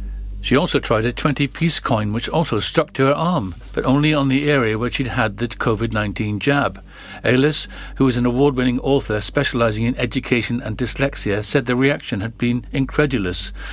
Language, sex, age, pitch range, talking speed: English, male, 50-69, 110-140 Hz, 175 wpm